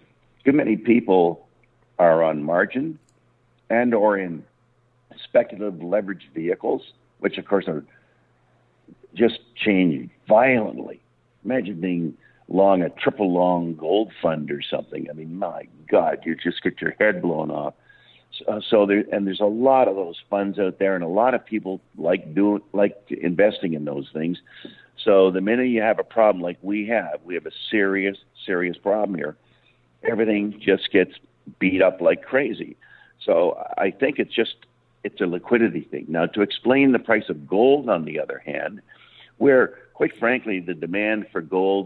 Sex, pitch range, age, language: male, 85-110 Hz, 60-79, English